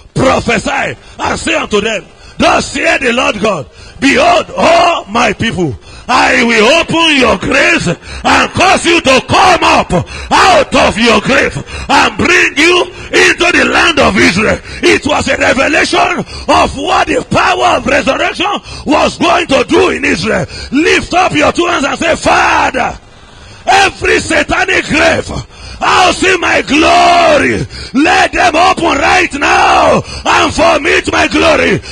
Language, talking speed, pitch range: English, 150 wpm, 300-365 Hz